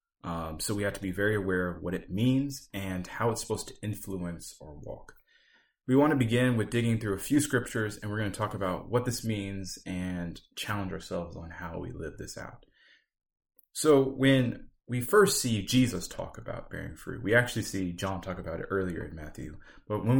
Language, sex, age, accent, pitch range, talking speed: English, male, 30-49, American, 95-125 Hz, 210 wpm